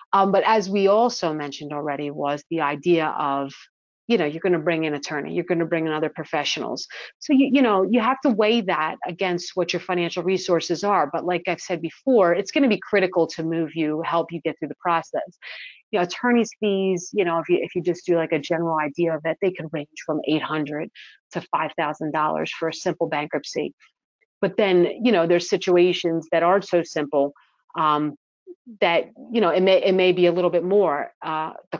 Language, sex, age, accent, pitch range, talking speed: English, female, 30-49, American, 160-185 Hz, 215 wpm